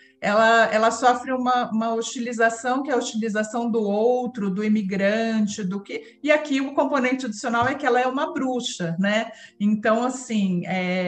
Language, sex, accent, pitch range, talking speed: Portuguese, female, Brazilian, 200-250 Hz, 170 wpm